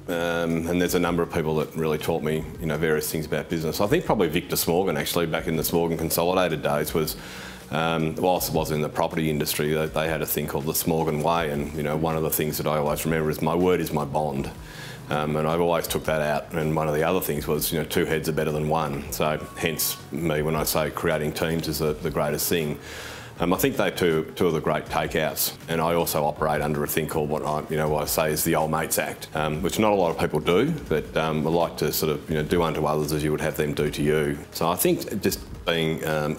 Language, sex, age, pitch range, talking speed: English, male, 30-49, 75-80 Hz, 270 wpm